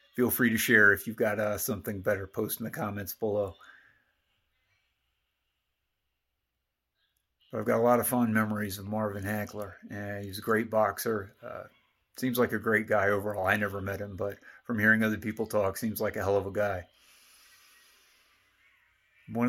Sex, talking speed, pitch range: male, 165 wpm, 100-115 Hz